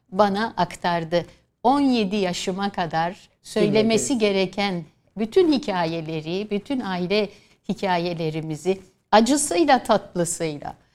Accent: native